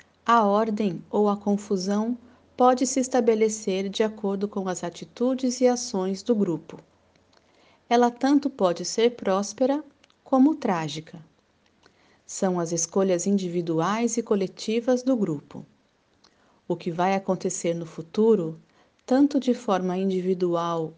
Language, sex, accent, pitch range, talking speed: Portuguese, female, Brazilian, 185-235 Hz, 120 wpm